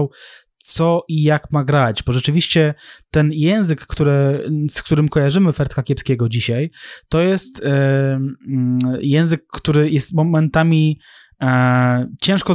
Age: 20-39